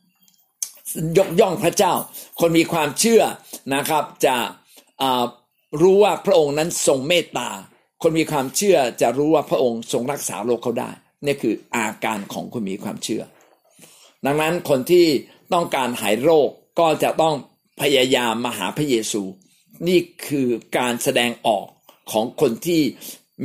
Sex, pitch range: male, 135-205 Hz